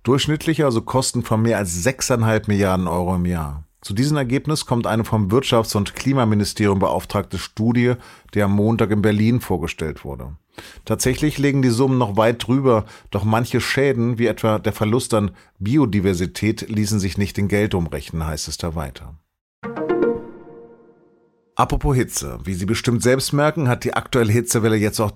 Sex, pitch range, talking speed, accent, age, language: male, 95-120 Hz, 160 wpm, German, 40-59, German